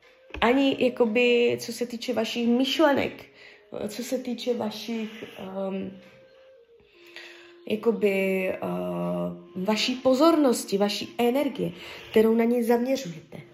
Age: 20-39